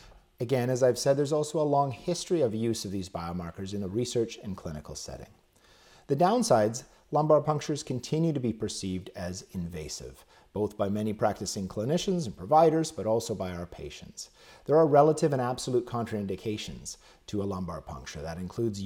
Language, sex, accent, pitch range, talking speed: English, male, American, 95-130 Hz, 170 wpm